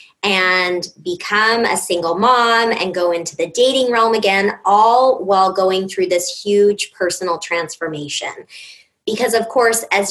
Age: 20-39